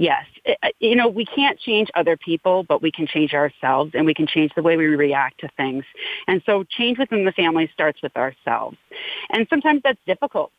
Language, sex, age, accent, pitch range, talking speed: English, female, 40-59, American, 155-210 Hz, 205 wpm